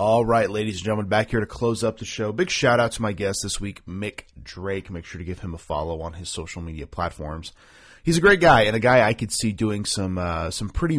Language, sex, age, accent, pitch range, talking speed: English, male, 30-49, American, 85-110 Hz, 260 wpm